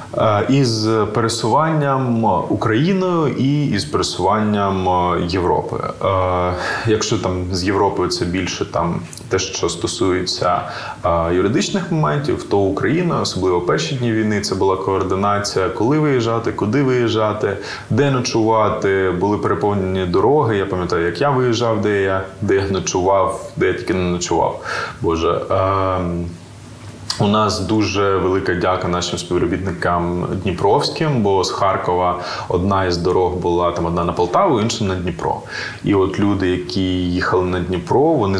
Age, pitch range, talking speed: 20-39, 90-110 Hz, 130 wpm